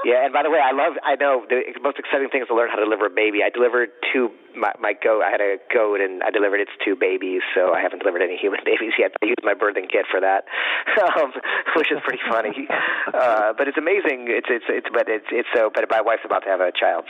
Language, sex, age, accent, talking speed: English, male, 40-59, American, 265 wpm